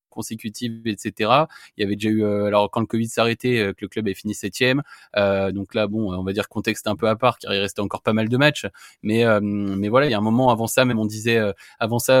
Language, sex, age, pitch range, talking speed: French, male, 20-39, 110-135 Hz, 265 wpm